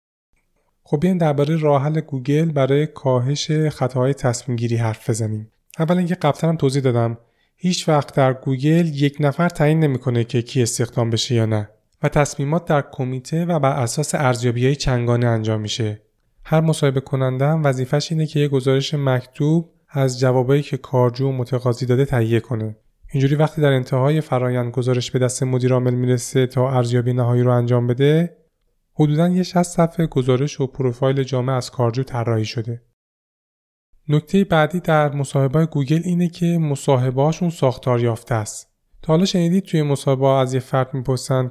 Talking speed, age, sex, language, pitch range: 150 wpm, 30-49, male, Persian, 120-150 Hz